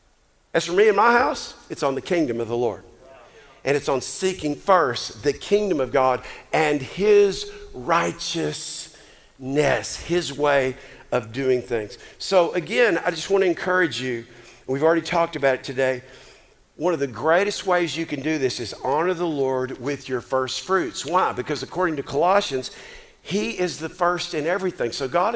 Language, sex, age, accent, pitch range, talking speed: English, male, 50-69, American, 135-180 Hz, 175 wpm